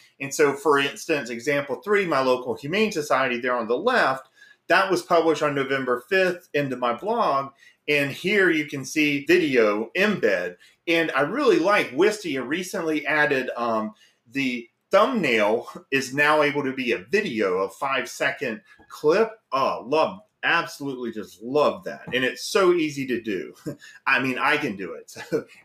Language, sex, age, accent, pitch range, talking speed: English, male, 30-49, American, 125-175 Hz, 165 wpm